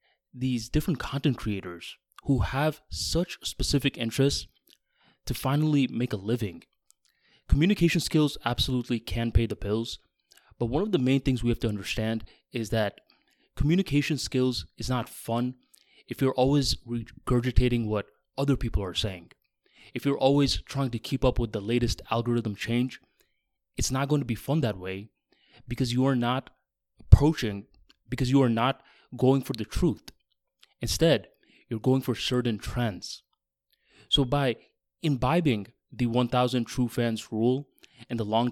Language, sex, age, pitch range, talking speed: English, male, 20-39, 115-140 Hz, 150 wpm